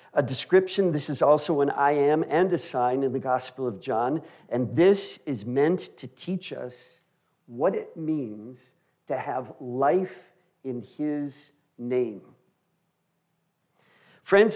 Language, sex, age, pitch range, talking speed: English, male, 50-69, 140-185 Hz, 135 wpm